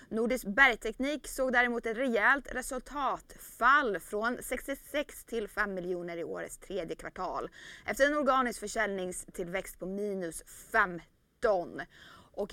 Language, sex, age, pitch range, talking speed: Swedish, female, 20-39, 195-250 Hz, 115 wpm